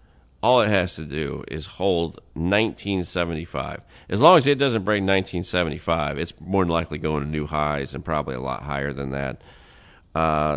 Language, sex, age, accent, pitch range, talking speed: English, male, 40-59, American, 70-85 Hz, 175 wpm